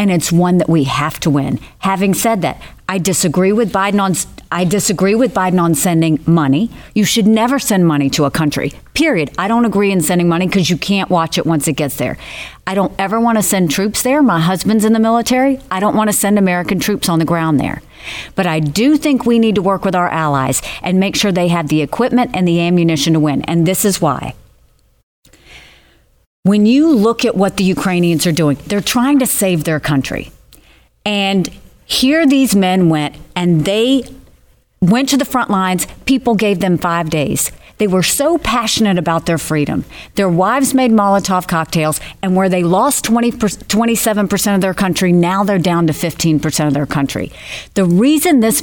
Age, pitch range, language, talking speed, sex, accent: 50-69, 170-220 Hz, English, 200 wpm, female, American